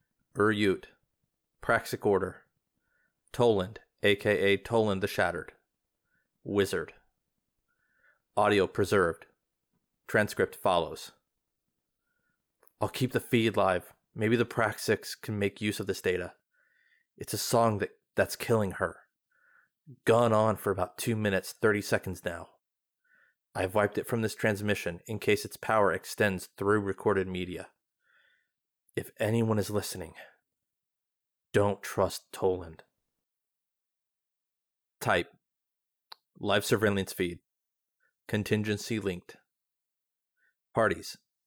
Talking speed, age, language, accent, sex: 100 wpm, 30-49, English, American, male